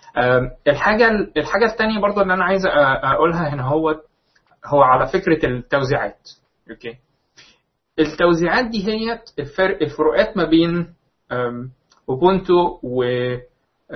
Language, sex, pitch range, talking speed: Arabic, male, 140-195 Hz, 100 wpm